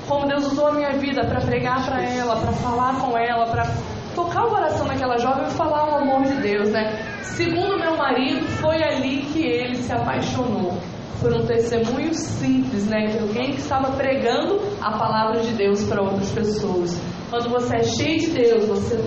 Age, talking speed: 20-39, 185 wpm